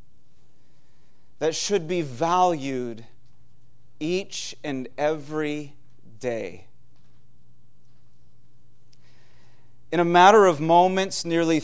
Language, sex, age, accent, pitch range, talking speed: English, male, 30-49, American, 145-185 Hz, 70 wpm